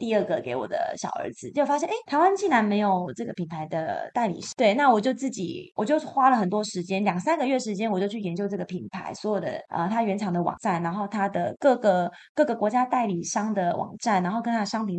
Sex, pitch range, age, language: female, 185-245 Hz, 20-39, Chinese